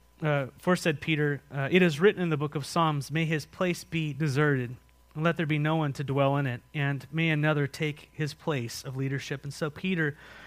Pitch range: 140-185 Hz